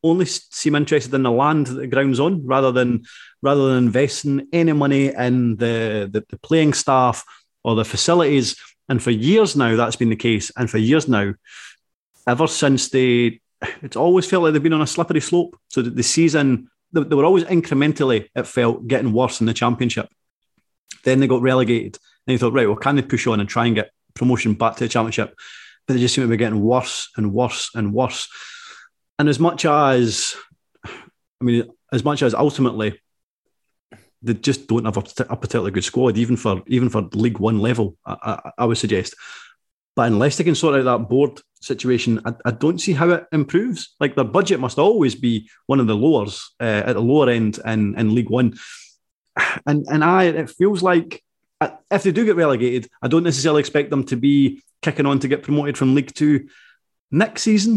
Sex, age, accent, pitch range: male, 30-49, British, 115-150 Hz